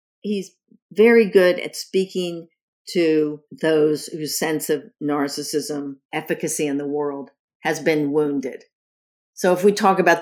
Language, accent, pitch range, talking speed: English, American, 140-165 Hz, 135 wpm